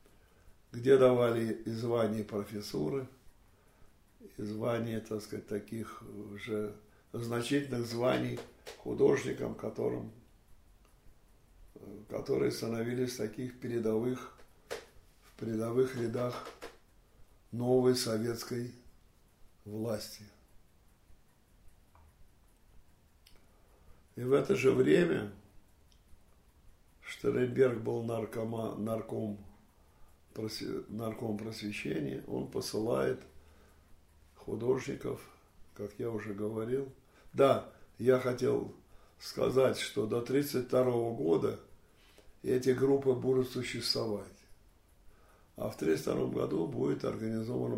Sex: male